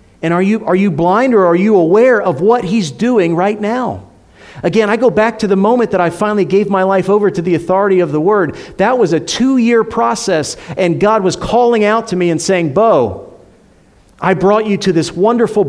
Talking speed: 220 wpm